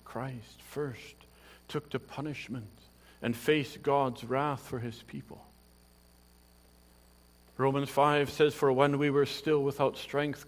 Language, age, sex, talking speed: English, 50-69, male, 125 wpm